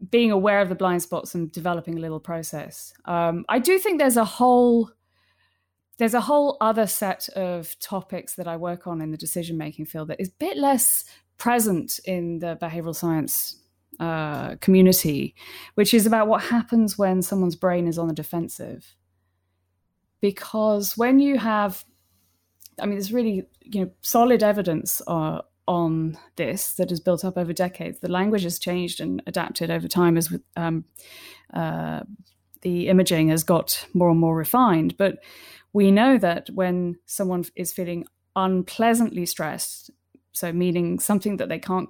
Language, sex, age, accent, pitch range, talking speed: English, female, 20-39, British, 165-210 Hz, 165 wpm